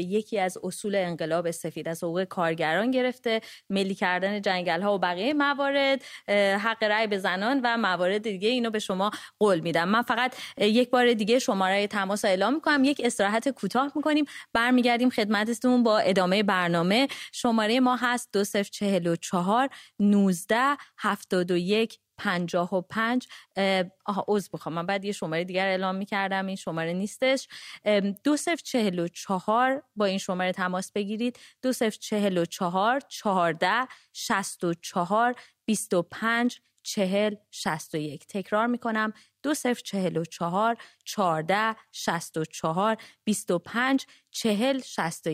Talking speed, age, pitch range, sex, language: 120 wpm, 20-39, 185-235 Hz, female, English